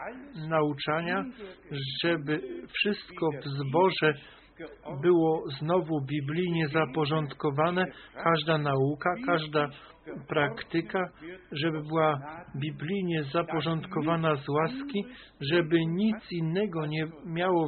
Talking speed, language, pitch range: 80 wpm, Polish, 150-180 Hz